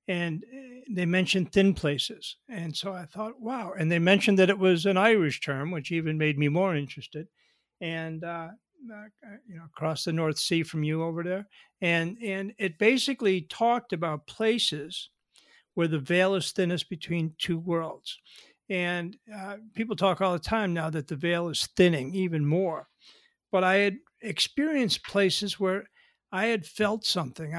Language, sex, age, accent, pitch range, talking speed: English, male, 60-79, American, 160-200 Hz, 170 wpm